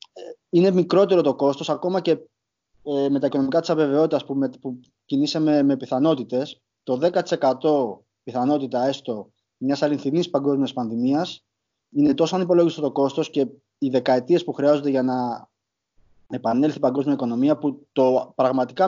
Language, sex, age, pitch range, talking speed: Greek, male, 20-39, 130-160 Hz, 135 wpm